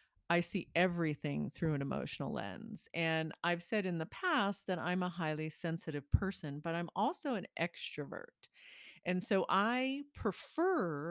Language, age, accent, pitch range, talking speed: English, 40-59, American, 165-200 Hz, 150 wpm